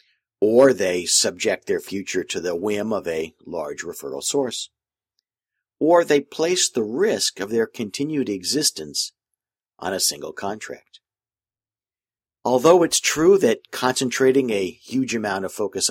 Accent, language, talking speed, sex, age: American, English, 135 wpm, male, 50-69